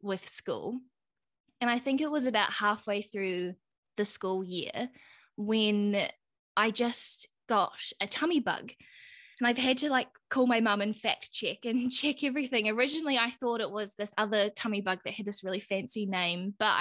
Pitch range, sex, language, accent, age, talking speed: 195-235 Hz, female, English, Australian, 20-39, 180 wpm